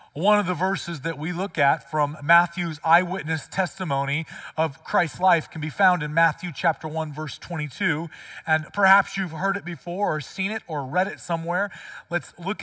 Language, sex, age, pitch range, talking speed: English, male, 30-49, 155-205 Hz, 185 wpm